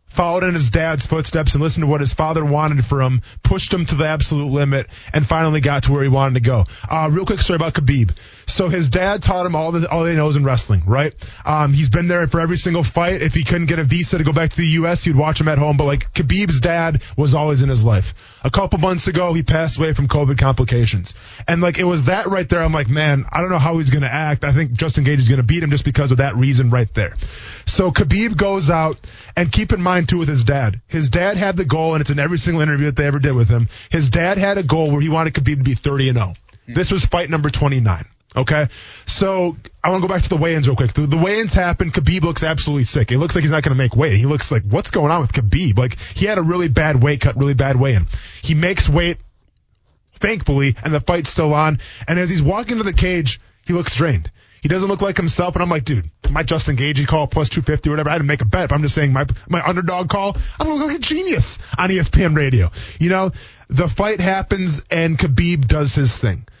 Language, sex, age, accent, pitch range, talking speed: English, male, 20-39, American, 130-170 Hz, 260 wpm